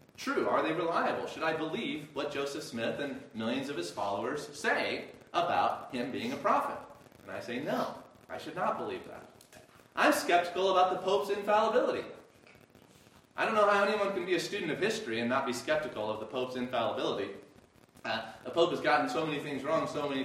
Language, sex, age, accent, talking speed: English, male, 30-49, American, 195 wpm